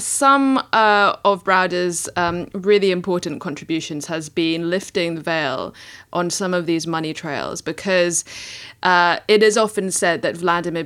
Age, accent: 20-39, British